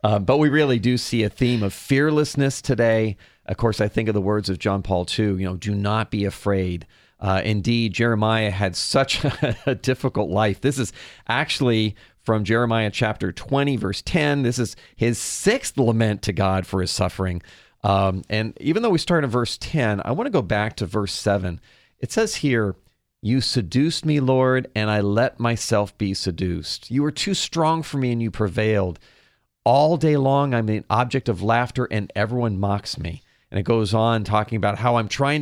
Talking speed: 195 wpm